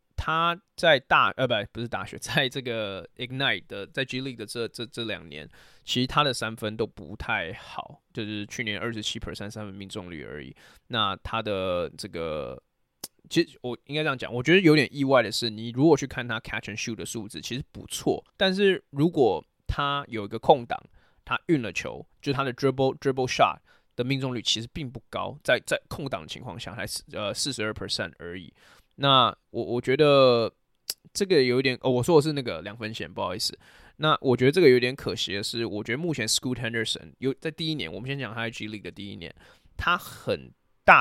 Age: 20-39